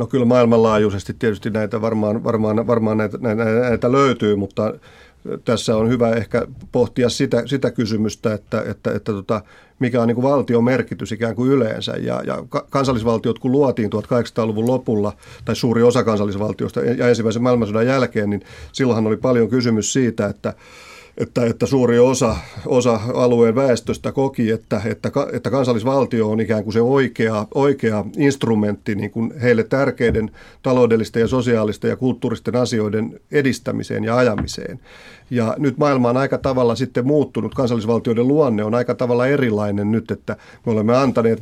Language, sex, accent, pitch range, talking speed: Finnish, male, native, 110-125 Hz, 155 wpm